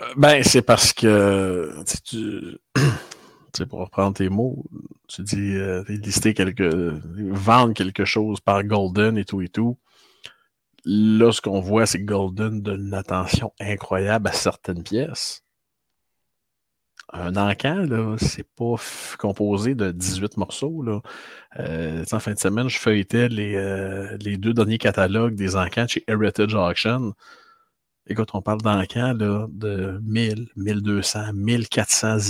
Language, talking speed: French, 145 wpm